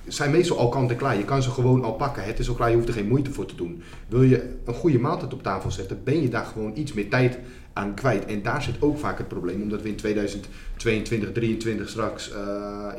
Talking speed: 255 wpm